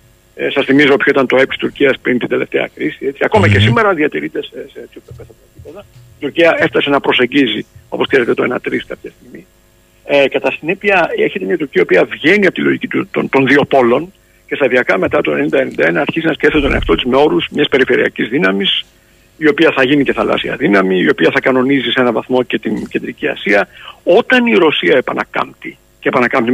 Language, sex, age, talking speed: Greek, male, 60-79, 195 wpm